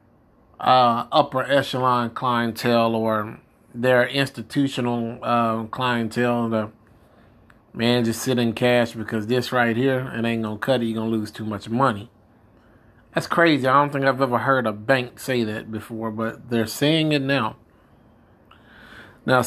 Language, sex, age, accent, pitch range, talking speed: English, male, 30-49, American, 115-140 Hz, 150 wpm